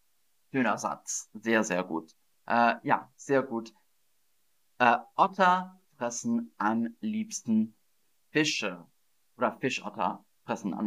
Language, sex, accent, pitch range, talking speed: German, male, German, 120-185 Hz, 105 wpm